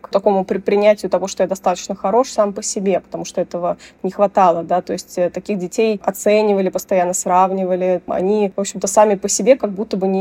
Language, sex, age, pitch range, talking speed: Russian, female, 20-39, 180-205 Hz, 200 wpm